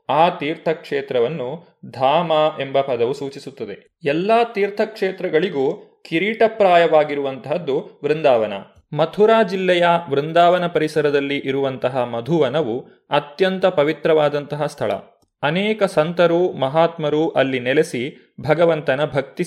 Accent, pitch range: native, 140-185 Hz